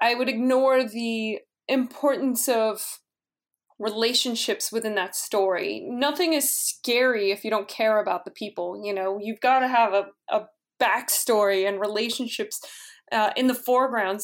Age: 20-39